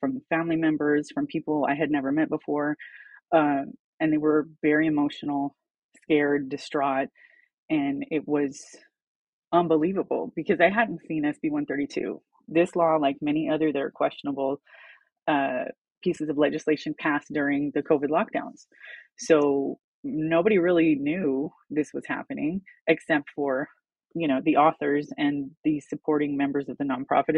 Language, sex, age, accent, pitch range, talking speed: English, female, 20-39, American, 145-185 Hz, 140 wpm